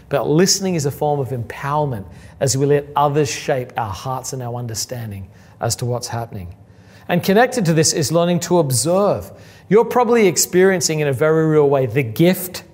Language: English